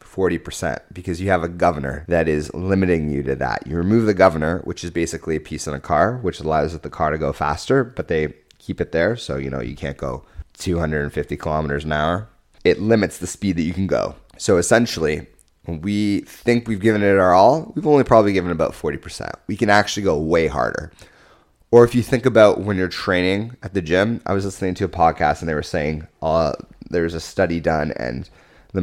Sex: male